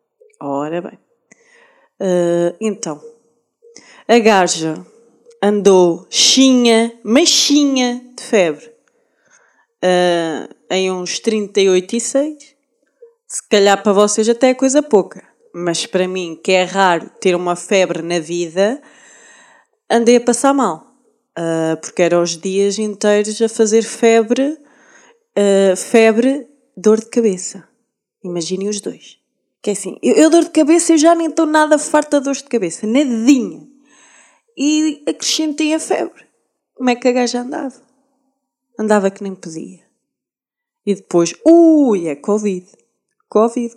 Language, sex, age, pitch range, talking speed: Portuguese, female, 20-39, 185-275 Hz, 130 wpm